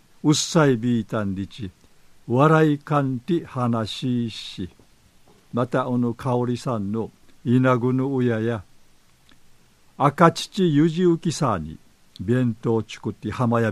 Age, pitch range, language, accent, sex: 50-69, 110-145 Hz, Japanese, native, male